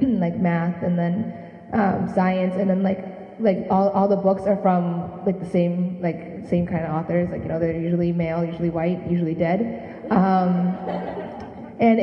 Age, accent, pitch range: 20-39, American, 170-200 Hz